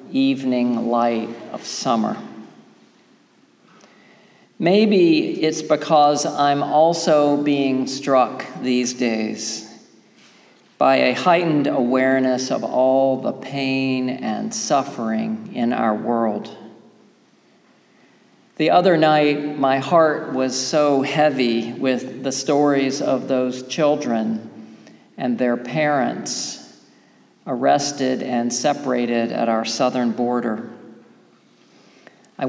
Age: 50-69